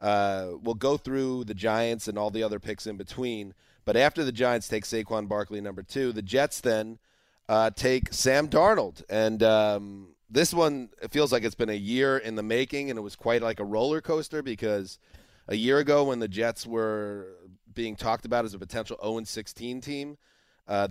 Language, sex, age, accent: English, male, 30-49, American